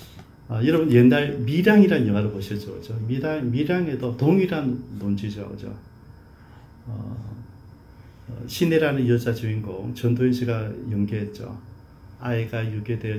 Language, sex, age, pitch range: Korean, male, 40-59, 110-130 Hz